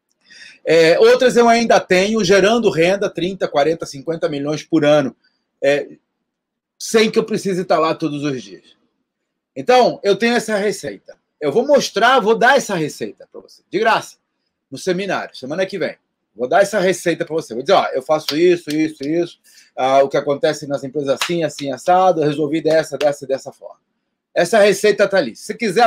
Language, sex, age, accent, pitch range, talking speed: Portuguese, male, 30-49, Brazilian, 160-220 Hz, 185 wpm